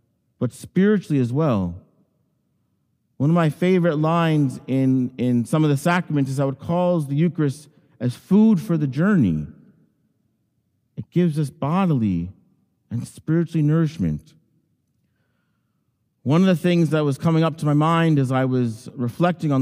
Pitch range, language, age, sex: 125-165 Hz, English, 50-69, male